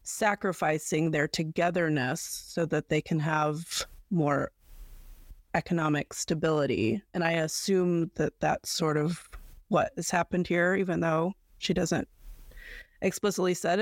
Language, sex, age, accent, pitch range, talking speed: English, female, 30-49, American, 155-185 Hz, 120 wpm